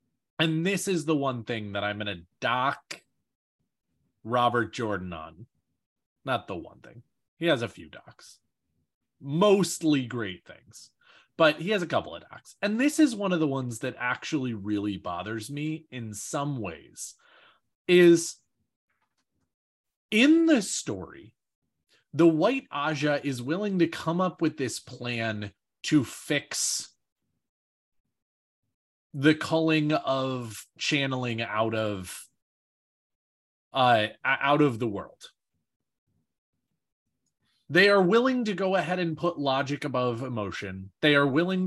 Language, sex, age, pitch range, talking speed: English, male, 30-49, 115-165 Hz, 130 wpm